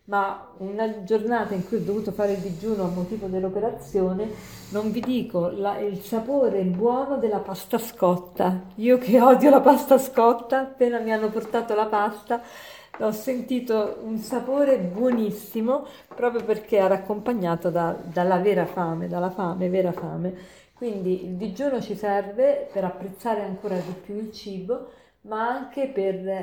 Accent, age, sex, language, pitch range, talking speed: native, 40-59, female, Italian, 185-230 Hz, 150 wpm